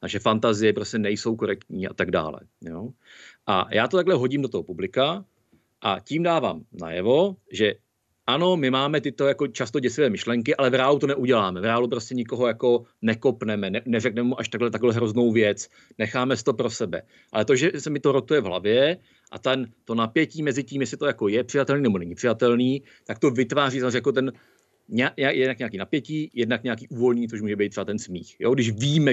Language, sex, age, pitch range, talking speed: Czech, male, 40-59, 110-140 Hz, 200 wpm